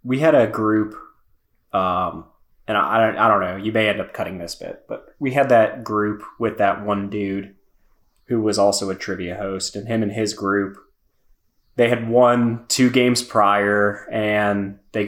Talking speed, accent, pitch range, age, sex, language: 180 wpm, American, 105-125 Hz, 20-39, male, English